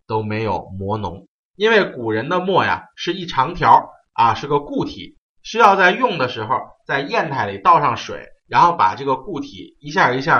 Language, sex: Chinese, male